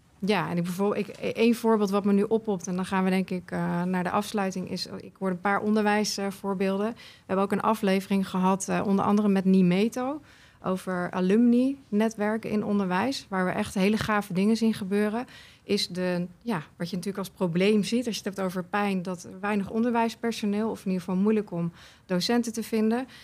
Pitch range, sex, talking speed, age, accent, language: 190-225 Hz, female, 200 wpm, 30-49, Dutch, Dutch